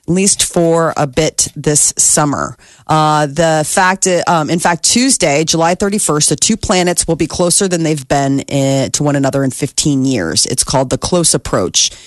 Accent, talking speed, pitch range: American, 195 wpm, 135-165 Hz